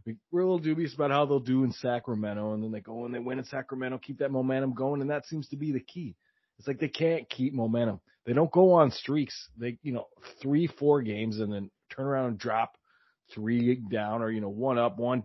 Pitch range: 105-145 Hz